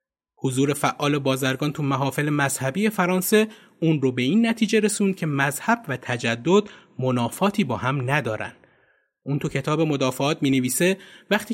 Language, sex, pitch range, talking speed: Persian, male, 130-195 Hz, 145 wpm